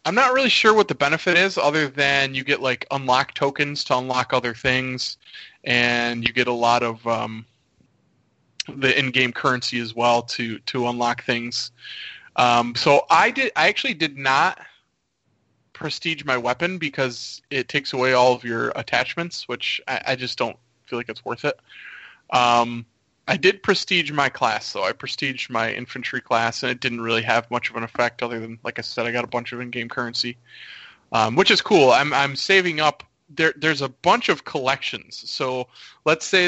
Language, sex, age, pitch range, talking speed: English, male, 20-39, 120-145 Hz, 190 wpm